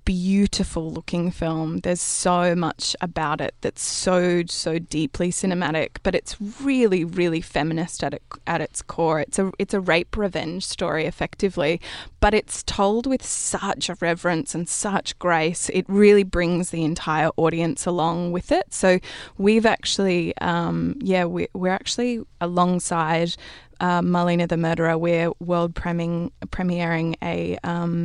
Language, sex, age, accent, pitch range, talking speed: English, female, 20-39, Australian, 165-185 Hz, 150 wpm